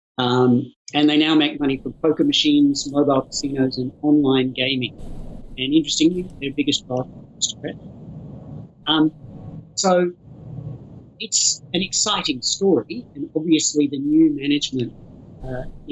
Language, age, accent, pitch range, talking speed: English, 50-69, Australian, 130-160 Hz, 125 wpm